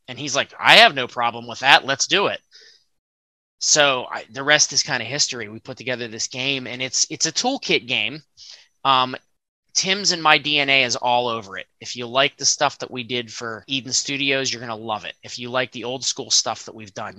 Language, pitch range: English, 110-135 Hz